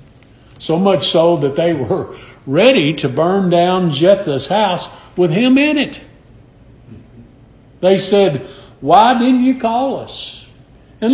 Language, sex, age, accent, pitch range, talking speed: English, male, 50-69, American, 120-165 Hz, 130 wpm